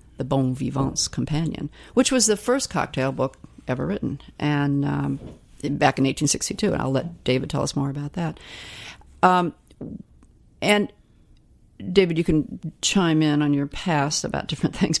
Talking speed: 155 wpm